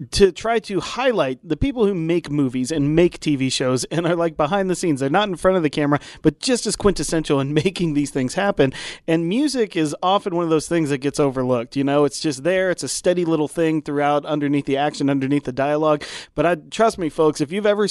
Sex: male